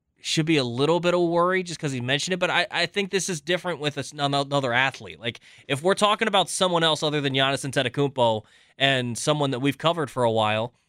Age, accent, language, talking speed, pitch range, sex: 20-39, American, English, 230 wpm, 125-160 Hz, male